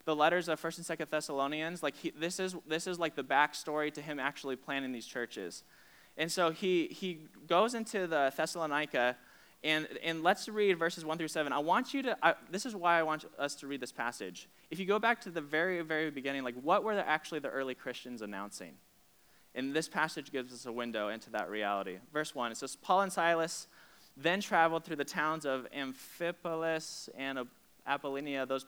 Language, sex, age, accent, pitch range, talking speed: English, male, 20-39, American, 140-170 Hz, 205 wpm